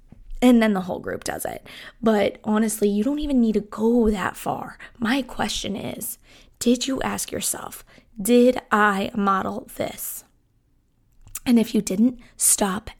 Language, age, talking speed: English, 20-39, 150 wpm